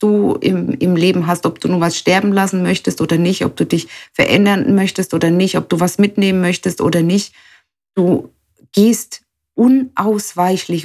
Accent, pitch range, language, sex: German, 180-220 Hz, German, female